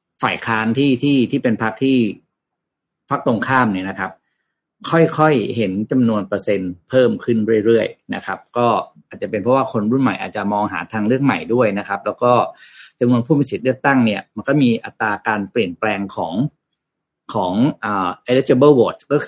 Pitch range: 105-130 Hz